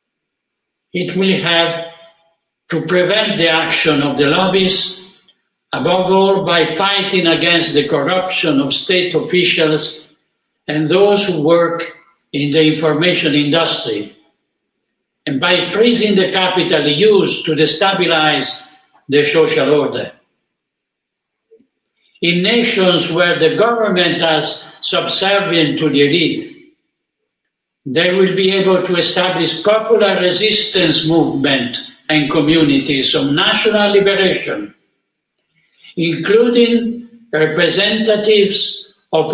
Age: 60-79